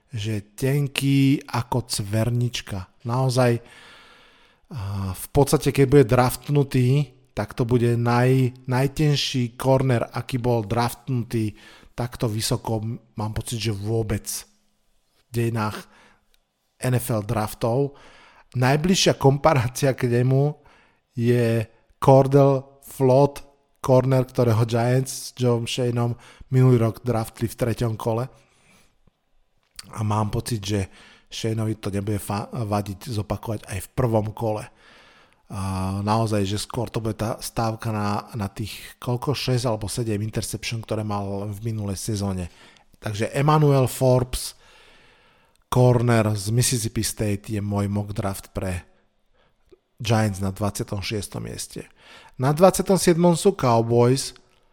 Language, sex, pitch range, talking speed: Slovak, male, 110-130 Hz, 115 wpm